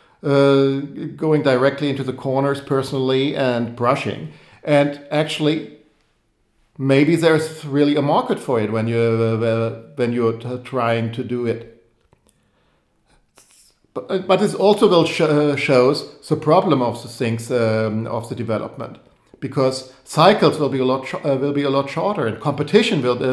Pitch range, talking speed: 120-150 Hz, 160 wpm